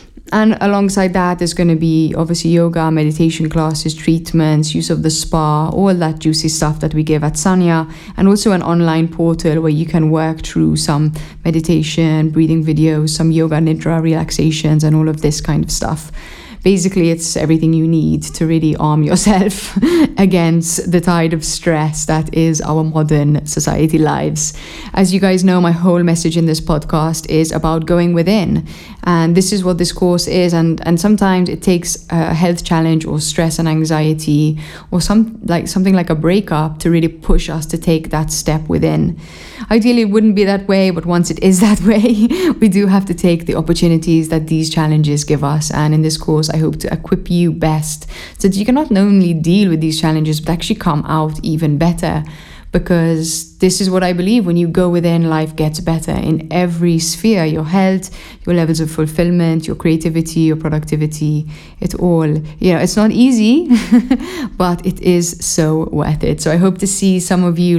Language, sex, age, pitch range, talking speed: English, female, 20-39, 155-180 Hz, 190 wpm